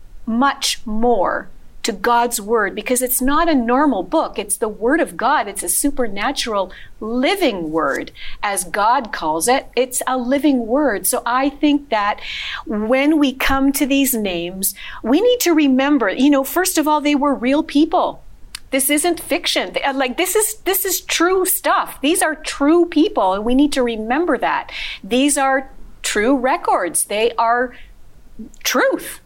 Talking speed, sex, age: 165 wpm, female, 40-59